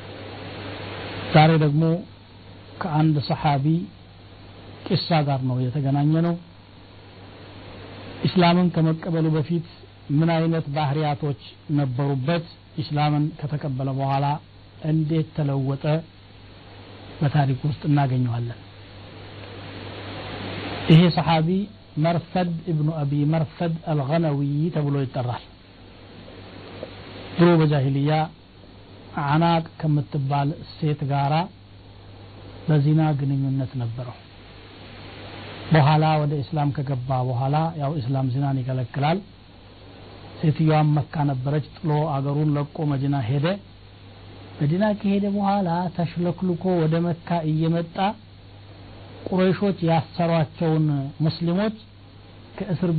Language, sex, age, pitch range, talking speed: Amharic, male, 60-79, 100-160 Hz, 75 wpm